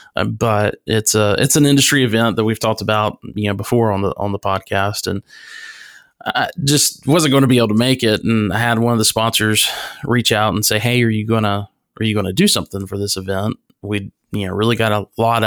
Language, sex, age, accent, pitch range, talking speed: English, male, 30-49, American, 105-125 Hz, 245 wpm